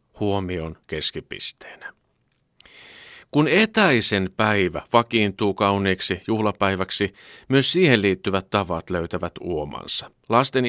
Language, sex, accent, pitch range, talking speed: Finnish, male, native, 90-115 Hz, 90 wpm